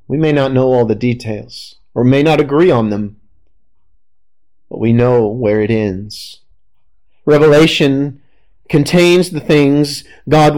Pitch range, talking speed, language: 115-195 Hz, 135 wpm, English